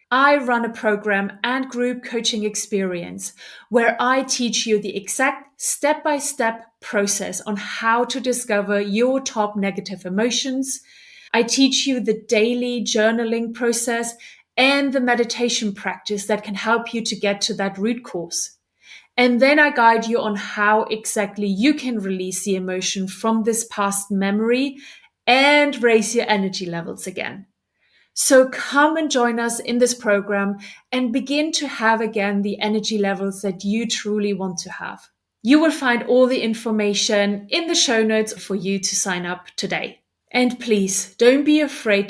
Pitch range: 205-245 Hz